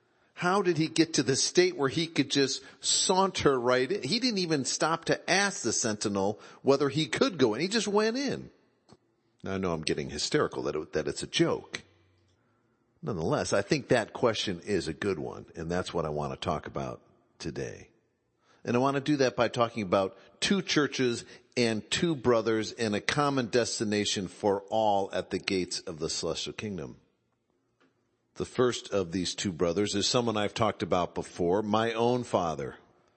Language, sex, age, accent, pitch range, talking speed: English, male, 50-69, American, 100-140 Hz, 185 wpm